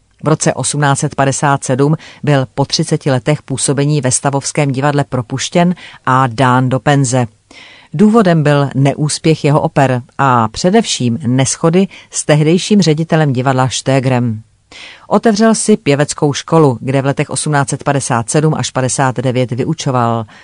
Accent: native